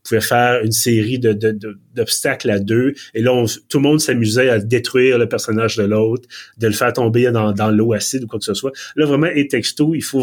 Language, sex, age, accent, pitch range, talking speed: French, male, 30-49, Canadian, 110-135 Hz, 245 wpm